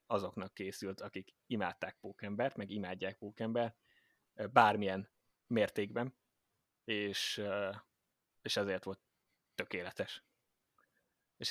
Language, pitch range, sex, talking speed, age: Hungarian, 95-115 Hz, male, 85 wpm, 20-39